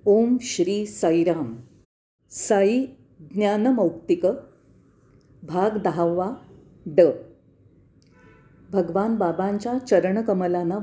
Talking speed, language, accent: 65 wpm, Marathi, native